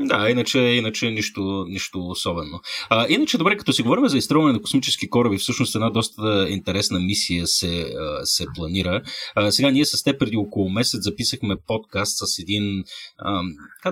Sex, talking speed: male, 165 wpm